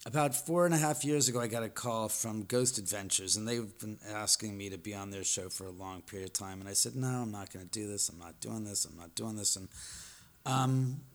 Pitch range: 105-130 Hz